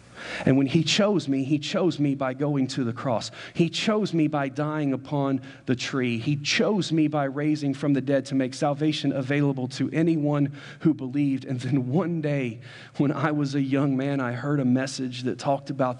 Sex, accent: male, American